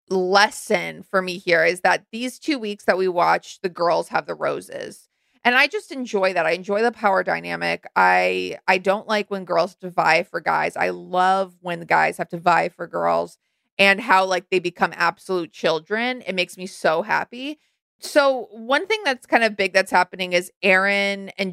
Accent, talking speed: American, 195 wpm